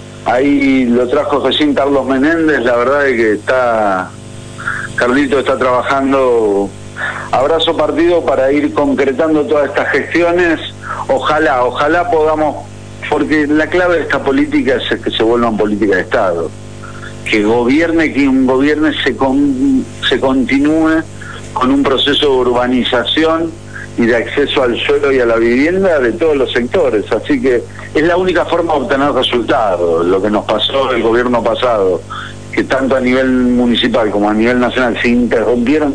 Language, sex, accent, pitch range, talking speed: Spanish, male, Argentinian, 120-155 Hz, 150 wpm